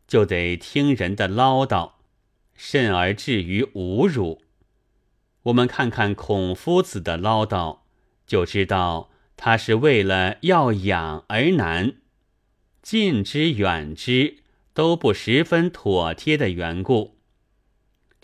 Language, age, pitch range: Chinese, 30-49, 95-130 Hz